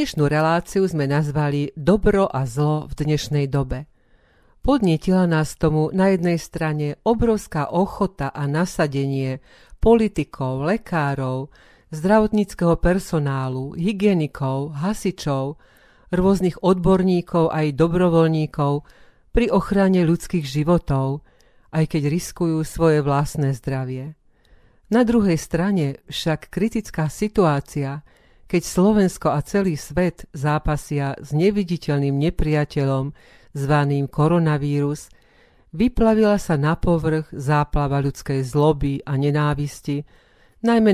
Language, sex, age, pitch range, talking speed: Slovak, female, 40-59, 145-180 Hz, 100 wpm